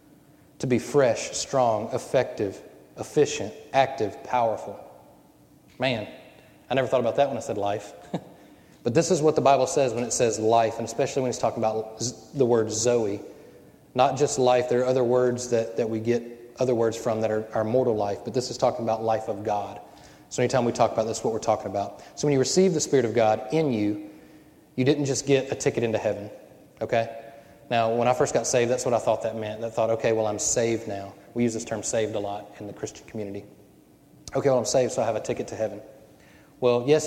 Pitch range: 110-130 Hz